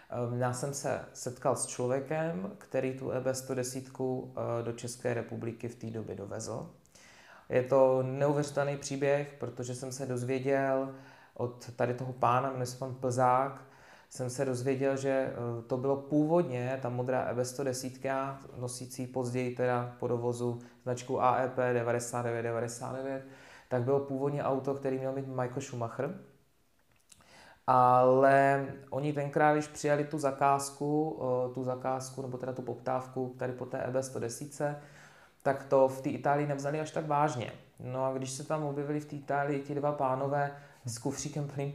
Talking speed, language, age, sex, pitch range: 145 wpm, Czech, 20-39, male, 125-140 Hz